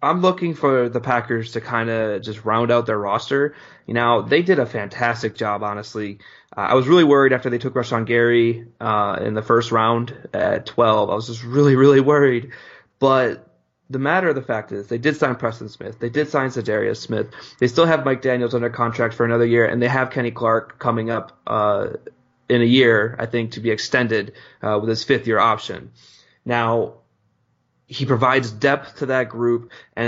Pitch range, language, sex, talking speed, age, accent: 115-125 Hz, English, male, 205 wpm, 20-39, American